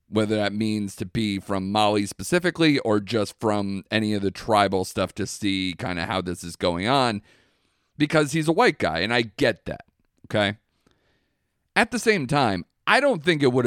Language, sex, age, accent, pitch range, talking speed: English, male, 40-59, American, 100-140 Hz, 195 wpm